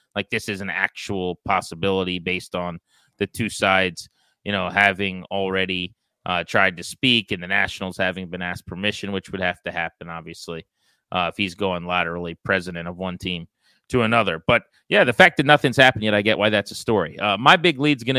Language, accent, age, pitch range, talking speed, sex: English, American, 30-49, 95-125 Hz, 205 wpm, male